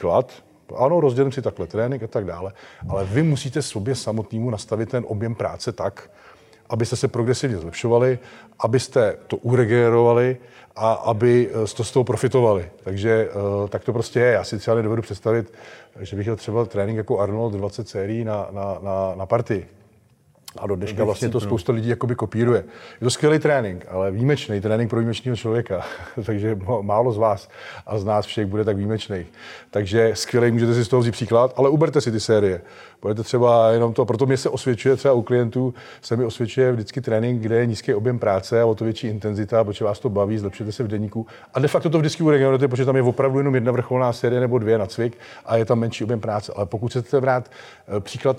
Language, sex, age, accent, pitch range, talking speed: Czech, male, 40-59, native, 105-125 Hz, 200 wpm